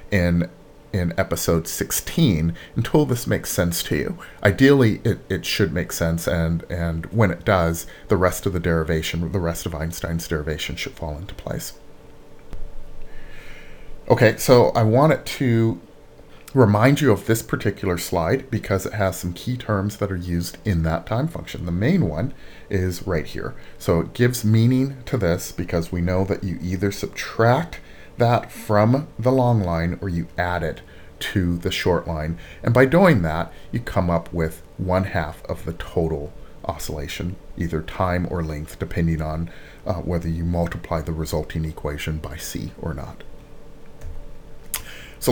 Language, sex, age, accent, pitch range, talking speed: English, male, 40-59, American, 85-110 Hz, 165 wpm